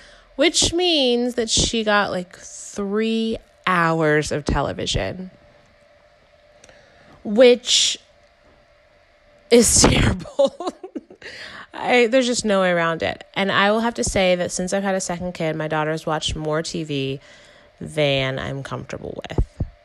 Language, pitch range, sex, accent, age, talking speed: English, 155-210 Hz, female, American, 20-39, 125 wpm